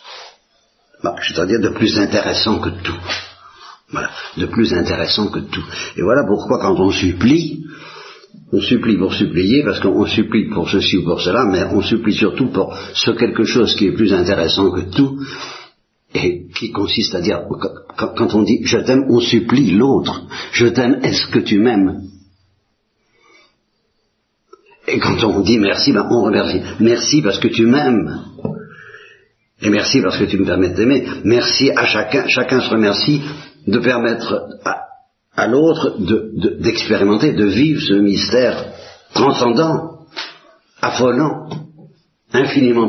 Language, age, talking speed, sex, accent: Italian, 60-79, 160 wpm, male, French